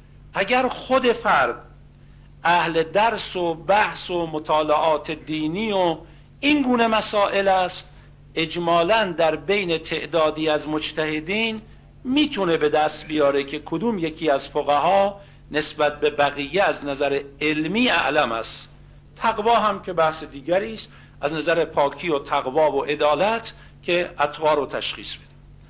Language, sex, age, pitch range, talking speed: Persian, male, 50-69, 150-200 Hz, 125 wpm